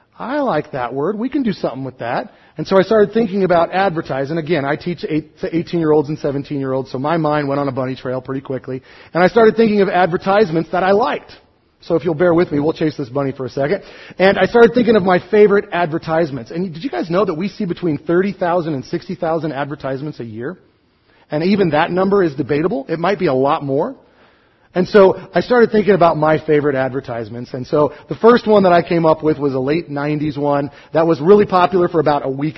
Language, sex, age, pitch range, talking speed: English, male, 30-49, 145-190 Hz, 230 wpm